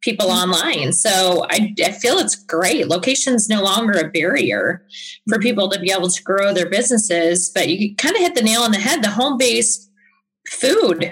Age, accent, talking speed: 20-39, American, 195 wpm